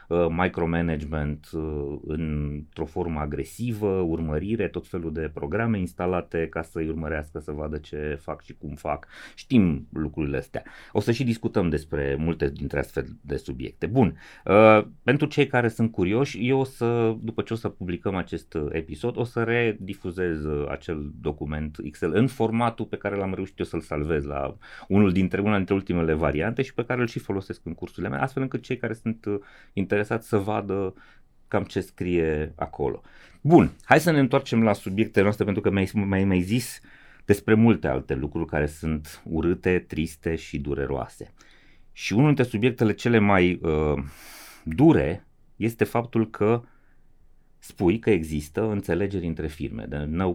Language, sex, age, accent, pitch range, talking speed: Romanian, male, 30-49, native, 80-110 Hz, 160 wpm